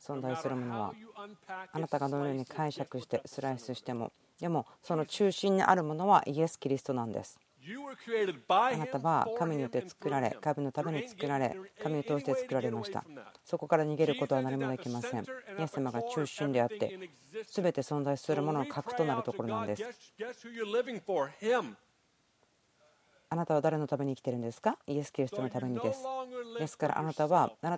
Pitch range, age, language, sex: 130-175 Hz, 40-59, Japanese, female